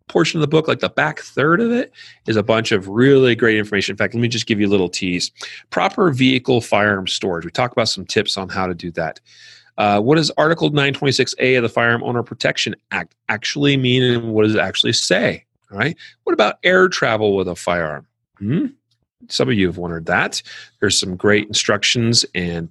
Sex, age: male, 40-59